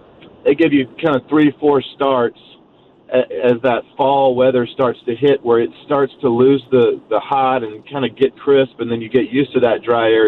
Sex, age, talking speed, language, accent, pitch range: male, 40-59, 215 wpm, English, American, 120-160 Hz